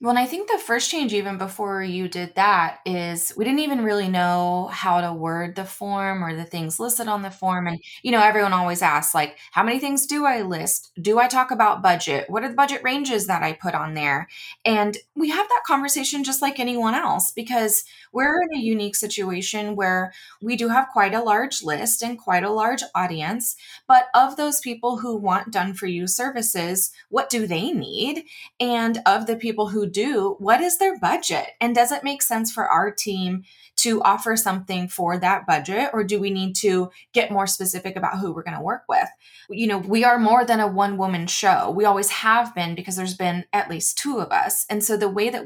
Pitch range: 185-240 Hz